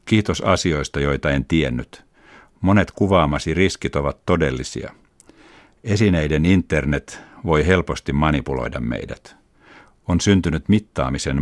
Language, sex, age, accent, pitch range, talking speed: Finnish, male, 60-79, native, 70-90 Hz, 100 wpm